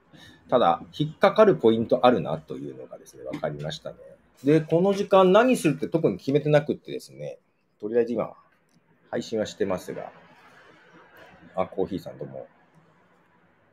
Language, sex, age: Japanese, male, 40-59